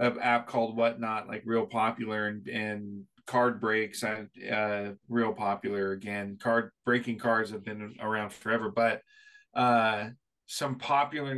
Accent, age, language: American, 20-39, English